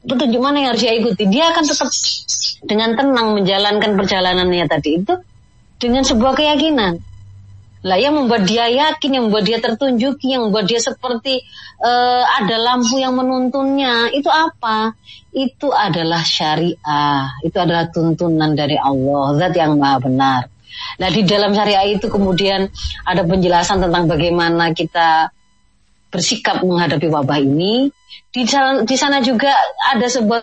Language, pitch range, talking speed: Indonesian, 165-245 Hz, 140 wpm